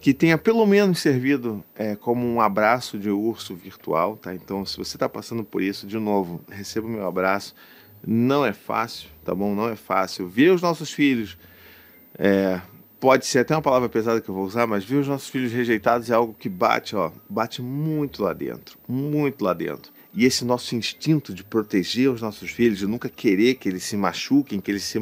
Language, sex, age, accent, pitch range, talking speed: Portuguese, male, 40-59, Brazilian, 95-140 Hz, 200 wpm